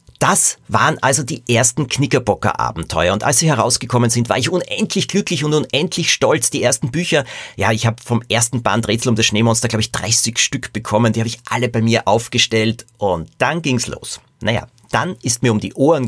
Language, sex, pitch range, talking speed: German, male, 105-135 Hz, 200 wpm